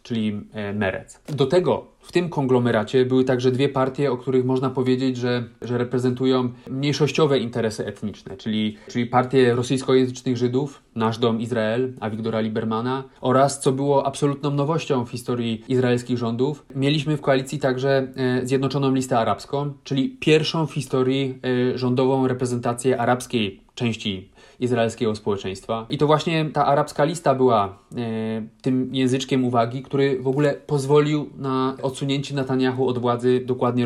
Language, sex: Polish, male